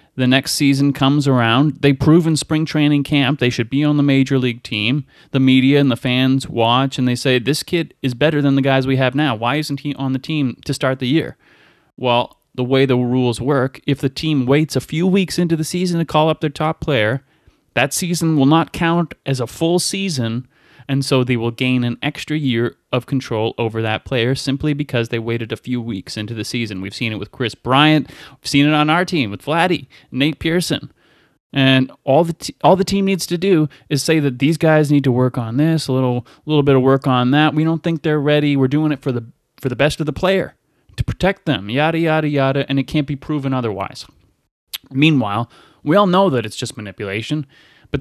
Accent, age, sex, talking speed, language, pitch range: American, 30-49, male, 230 wpm, English, 125-155 Hz